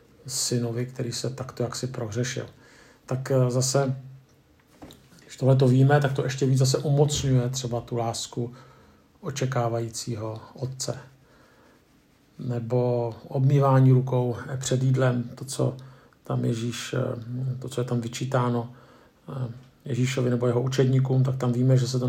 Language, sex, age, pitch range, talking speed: Czech, male, 50-69, 125-135 Hz, 130 wpm